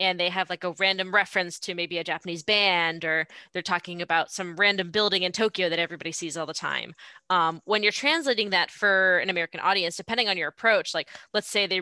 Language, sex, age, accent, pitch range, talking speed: English, female, 10-29, American, 170-210 Hz, 225 wpm